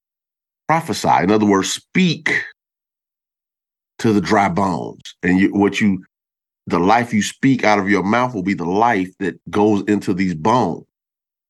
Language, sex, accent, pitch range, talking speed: English, male, American, 90-115 Hz, 155 wpm